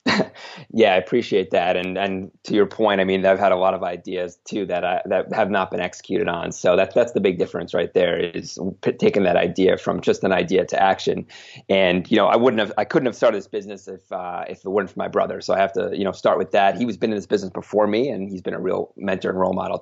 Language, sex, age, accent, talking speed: English, male, 30-49, American, 275 wpm